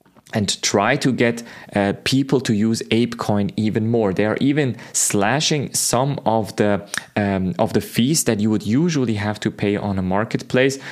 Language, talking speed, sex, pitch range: English, 180 wpm, male, 100-125 Hz